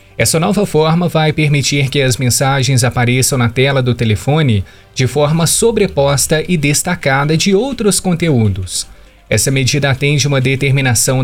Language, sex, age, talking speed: Portuguese, male, 20-39, 140 wpm